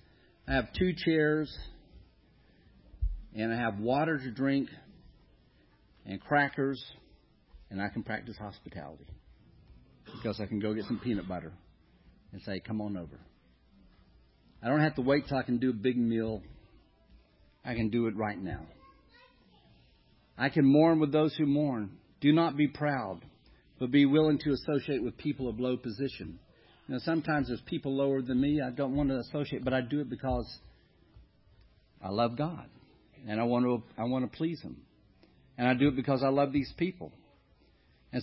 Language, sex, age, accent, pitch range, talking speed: English, male, 50-69, American, 110-145 Hz, 170 wpm